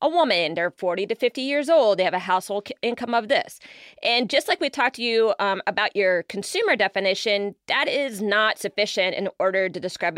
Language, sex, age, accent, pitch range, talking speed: English, female, 30-49, American, 190-245 Hz, 210 wpm